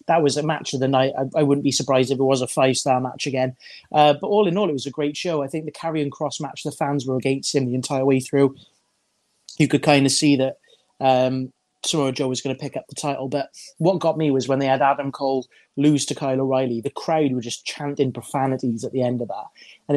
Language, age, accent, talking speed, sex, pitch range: English, 20-39, British, 260 wpm, male, 130-150 Hz